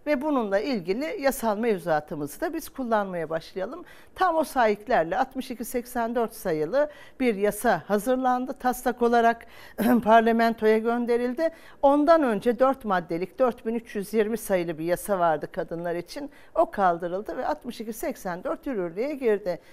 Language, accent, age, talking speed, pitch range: Turkish, native, 50-69, 115 wpm, 195-265 Hz